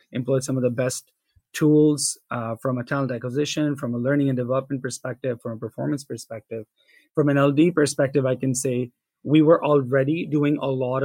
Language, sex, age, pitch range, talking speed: English, male, 20-39, 130-145 Hz, 185 wpm